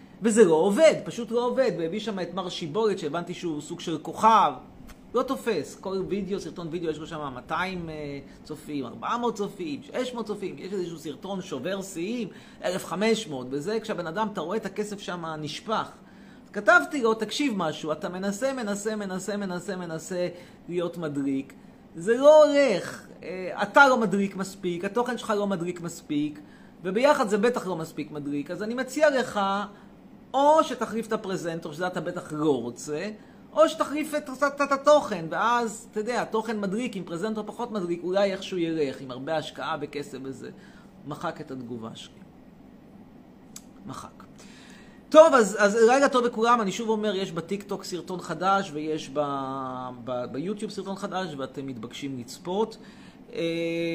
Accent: native